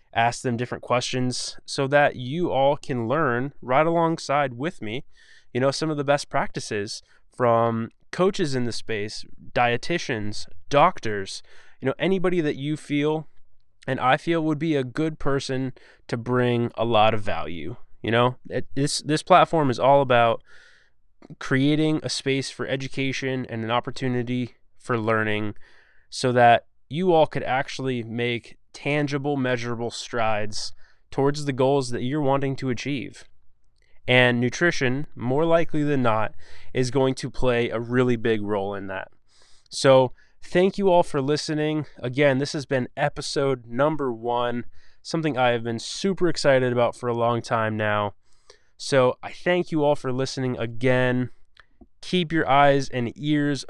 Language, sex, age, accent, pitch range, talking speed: English, male, 20-39, American, 120-145 Hz, 155 wpm